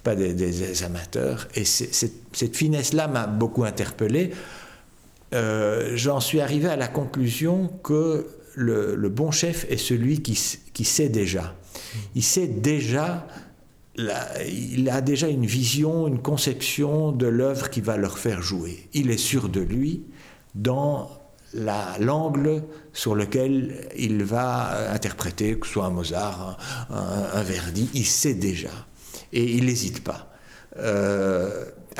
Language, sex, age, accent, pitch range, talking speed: French, male, 60-79, French, 100-140 Hz, 150 wpm